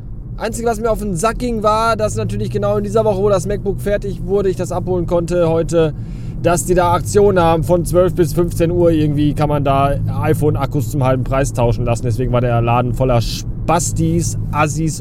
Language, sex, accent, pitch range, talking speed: German, male, German, 115-170 Hz, 205 wpm